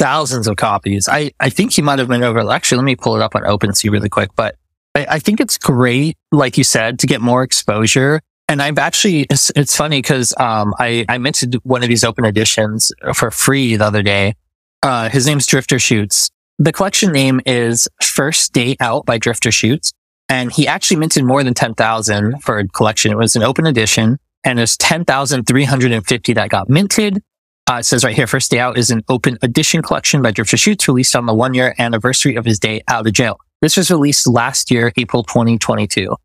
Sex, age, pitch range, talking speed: male, 20-39, 110-145 Hz, 205 wpm